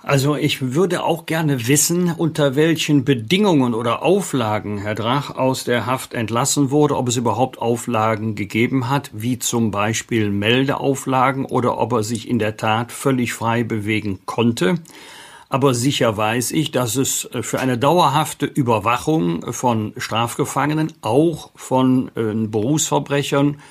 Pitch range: 115-145 Hz